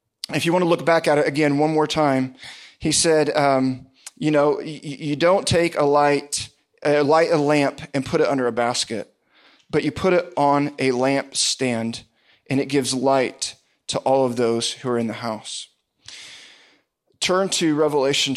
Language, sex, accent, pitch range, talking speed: English, male, American, 135-170 Hz, 185 wpm